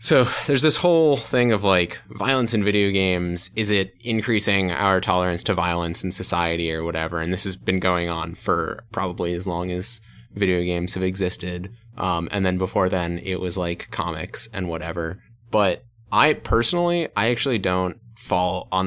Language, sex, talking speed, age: English, male, 180 wpm, 20-39